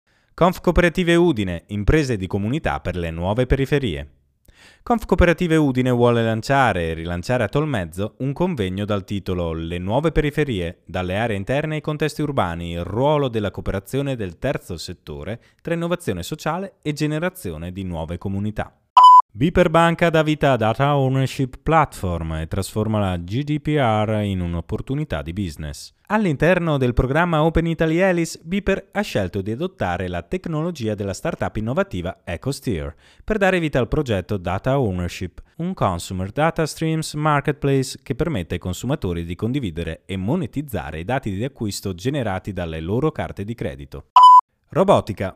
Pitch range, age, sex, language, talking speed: 100-155 Hz, 20-39, male, Italian, 145 wpm